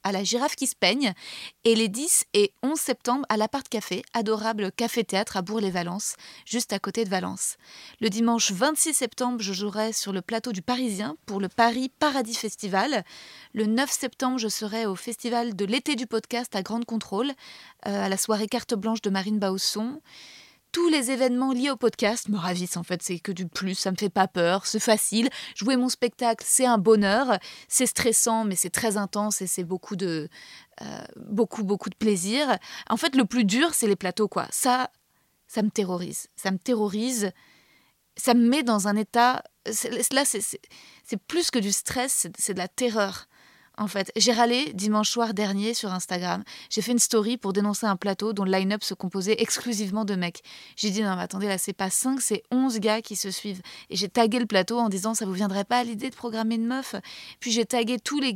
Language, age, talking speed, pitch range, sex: French, 20-39, 210 wpm, 200-240 Hz, female